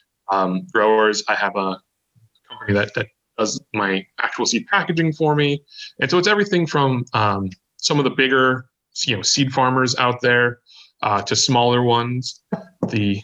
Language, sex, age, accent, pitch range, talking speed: English, male, 20-39, American, 105-120 Hz, 165 wpm